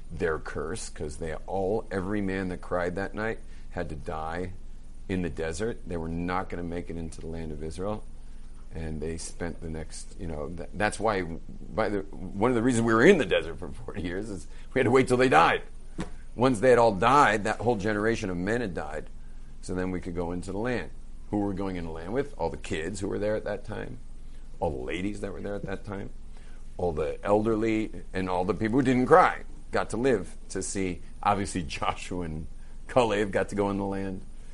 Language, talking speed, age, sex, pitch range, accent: English, 230 wpm, 50-69, male, 85-110 Hz, American